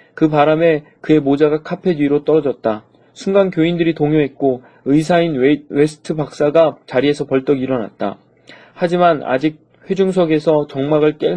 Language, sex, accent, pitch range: Korean, male, native, 140-170 Hz